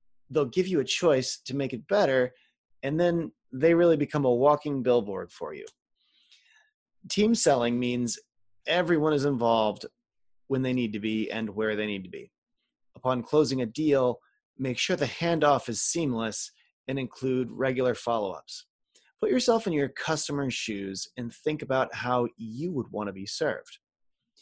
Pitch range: 115-160 Hz